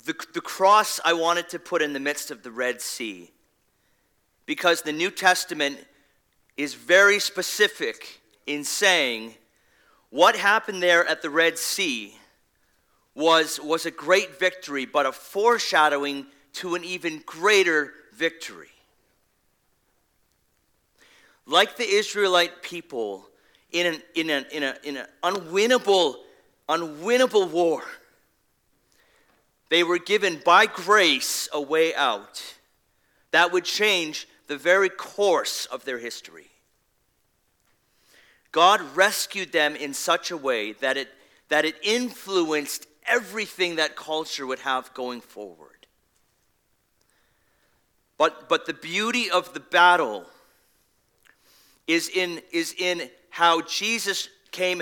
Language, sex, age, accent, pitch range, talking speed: English, male, 40-59, American, 150-195 Hz, 115 wpm